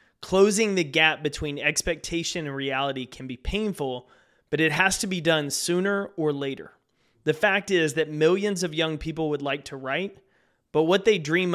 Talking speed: 180 wpm